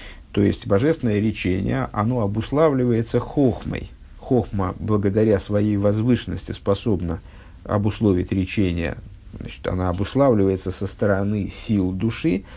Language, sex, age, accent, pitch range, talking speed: Russian, male, 50-69, native, 95-125 Hz, 100 wpm